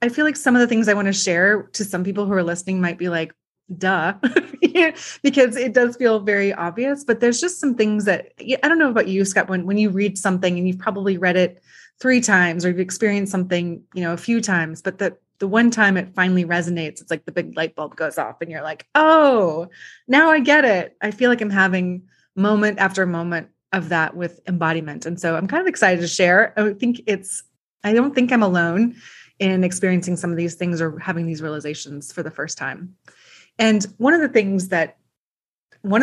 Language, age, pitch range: English, 20-39, 175-230 Hz